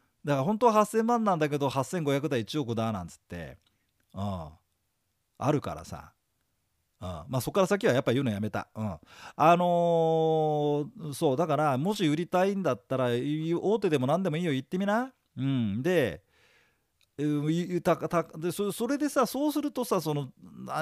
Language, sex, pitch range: Japanese, male, 125-200 Hz